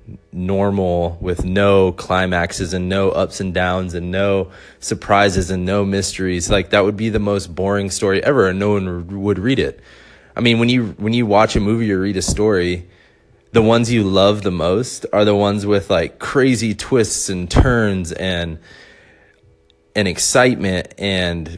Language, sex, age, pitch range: English, male, 20-39, 85-105 Hz